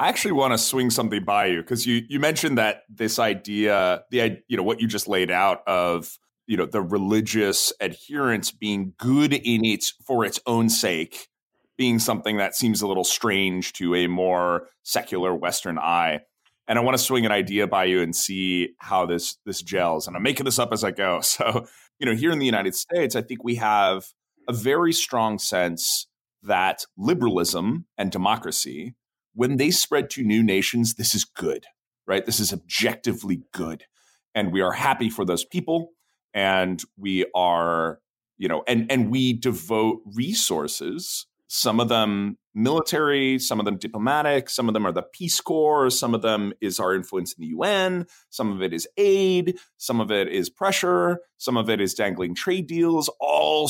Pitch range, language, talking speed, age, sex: 95-130 Hz, English, 185 wpm, 30-49, male